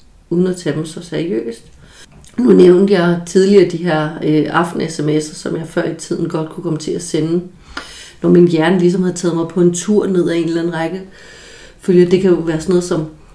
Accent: native